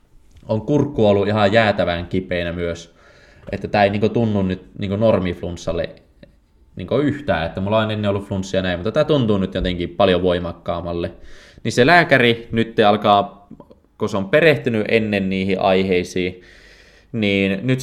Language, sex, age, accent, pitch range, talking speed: Finnish, male, 20-39, native, 90-110 Hz, 150 wpm